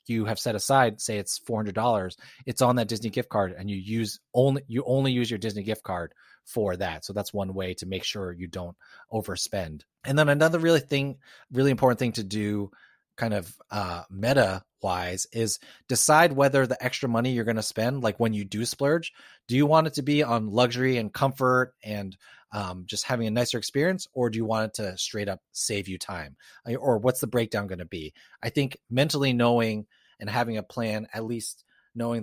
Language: English